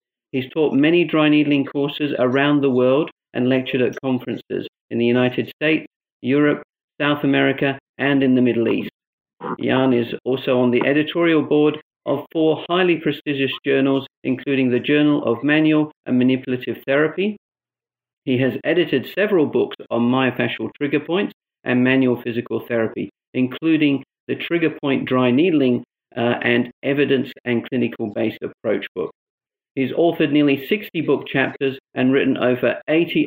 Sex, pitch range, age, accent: male, 125-150 Hz, 50-69, British